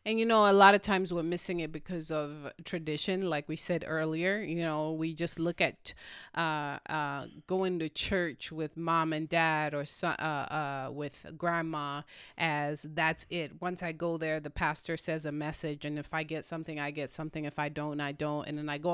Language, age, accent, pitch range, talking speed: English, 30-49, American, 160-205 Hz, 210 wpm